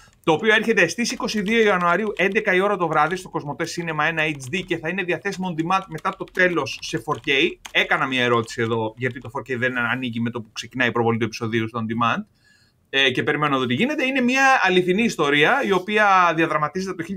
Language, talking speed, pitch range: Greek, 210 wpm, 155-215 Hz